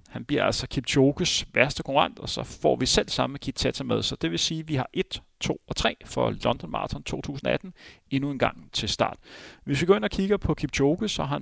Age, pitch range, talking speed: 30-49, 120-160 Hz, 255 wpm